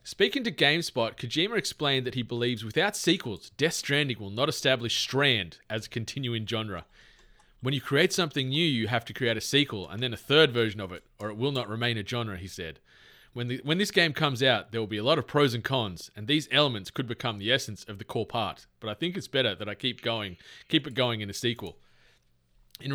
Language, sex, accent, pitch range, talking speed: English, male, Australian, 115-145 Hz, 235 wpm